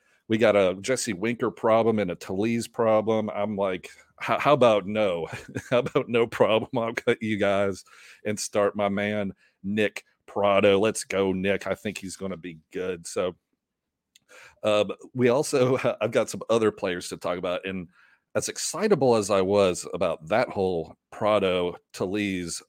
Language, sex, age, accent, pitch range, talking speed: English, male, 40-59, American, 100-120 Hz, 165 wpm